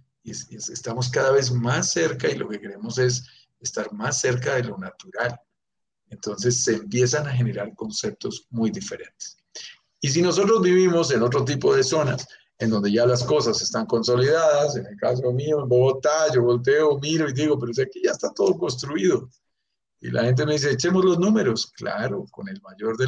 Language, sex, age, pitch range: Spanish, male, 50-69, 115-140 Hz